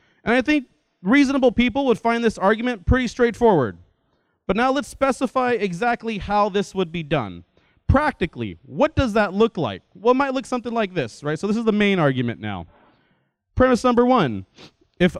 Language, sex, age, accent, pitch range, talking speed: English, male, 30-49, American, 170-245 Hz, 180 wpm